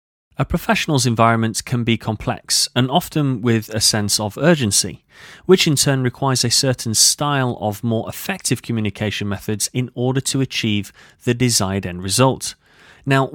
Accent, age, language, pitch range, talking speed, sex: British, 30-49, English, 110-150 Hz, 155 wpm, male